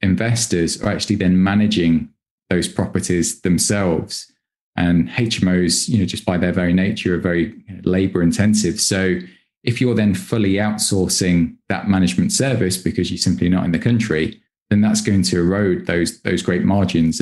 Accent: British